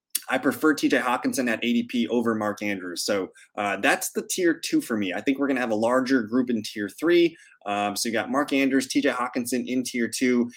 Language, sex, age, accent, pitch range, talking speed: English, male, 20-39, American, 115-150 Hz, 225 wpm